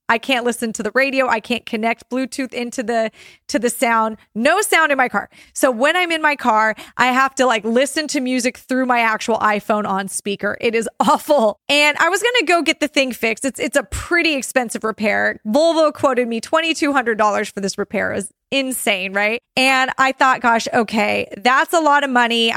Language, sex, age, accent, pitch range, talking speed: English, female, 20-39, American, 220-280 Hz, 205 wpm